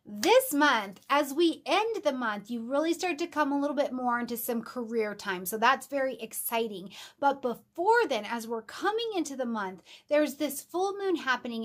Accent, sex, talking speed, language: American, female, 195 wpm, English